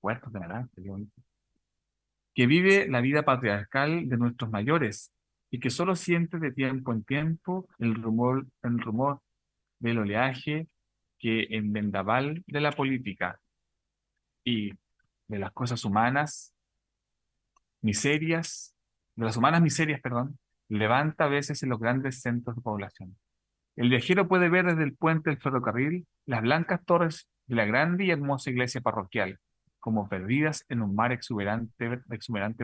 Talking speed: 140 wpm